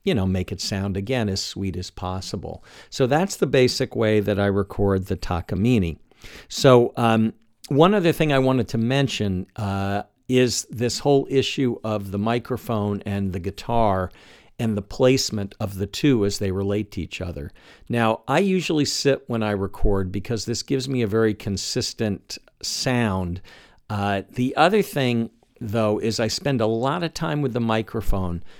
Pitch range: 100-130 Hz